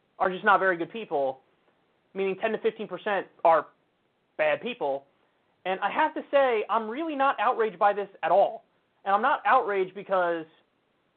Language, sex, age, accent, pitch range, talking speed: English, male, 30-49, American, 170-235 Hz, 165 wpm